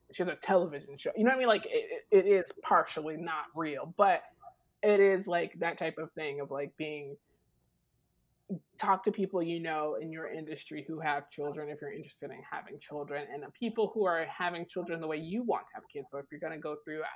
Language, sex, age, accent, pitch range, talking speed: English, male, 20-39, American, 155-220 Hz, 225 wpm